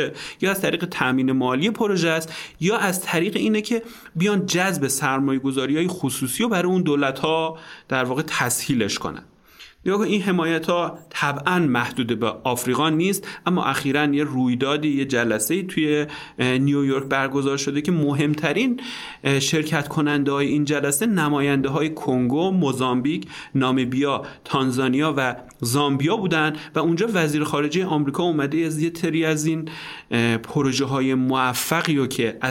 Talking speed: 140 wpm